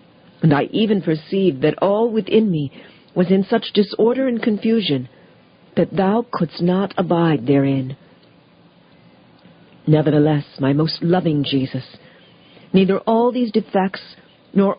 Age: 50-69